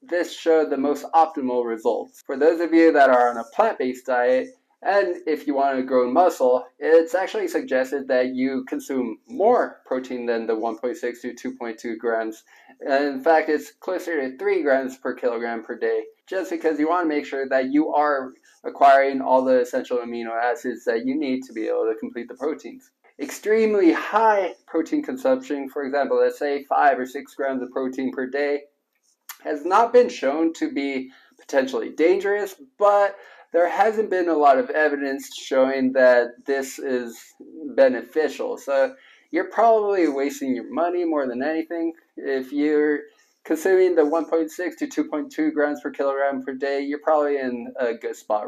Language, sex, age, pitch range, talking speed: English, male, 20-39, 130-205 Hz, 170 wpm